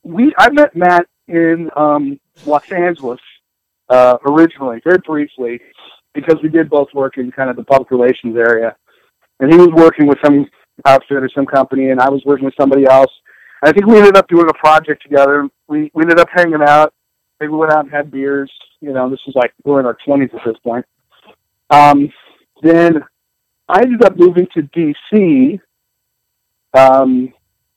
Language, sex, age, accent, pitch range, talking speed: English, male, 50-69, American, 130-165 Hz, 185 wpm